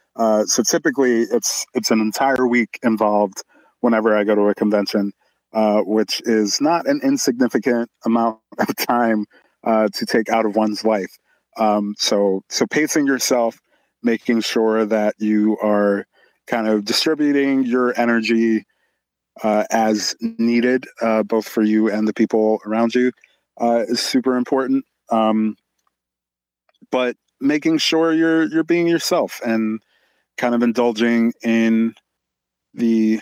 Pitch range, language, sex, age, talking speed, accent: 105-120 Hz, English, male, 30-49, 135 wpm, American